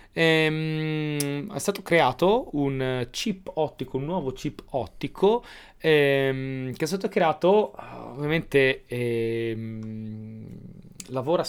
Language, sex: Italian, male